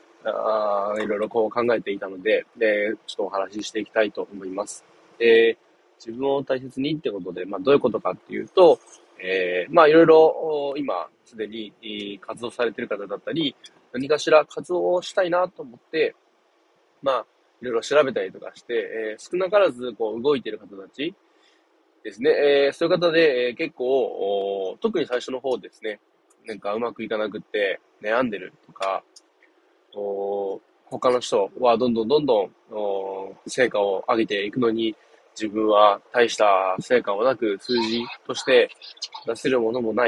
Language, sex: Japanese, male